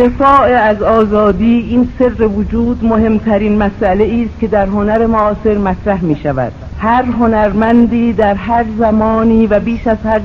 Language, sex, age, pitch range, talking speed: Persian, female, 50-69, 200-225 Hz, 145 wpm